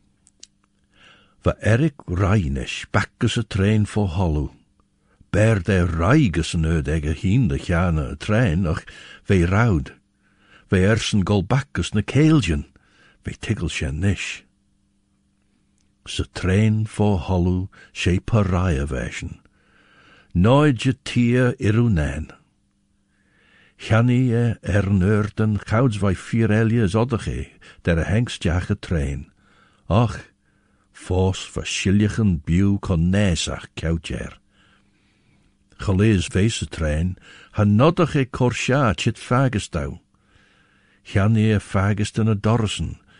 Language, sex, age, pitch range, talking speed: English, male, 60-79, 90-110 Hz, 105 wpm